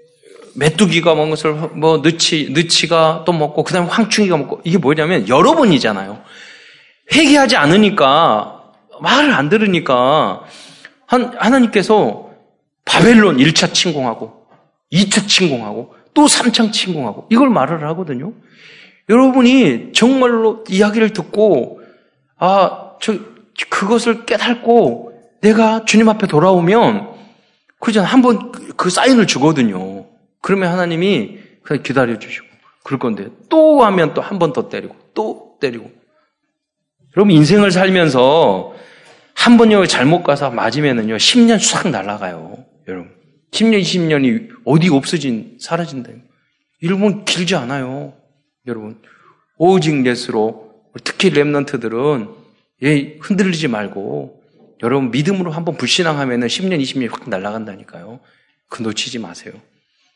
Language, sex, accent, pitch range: Korean, male, native, 145-225 Hz